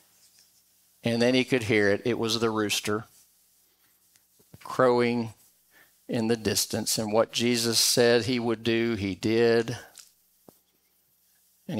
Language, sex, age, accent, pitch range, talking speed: English, male, 50-69, American, 110-175 Hz, 120 wpm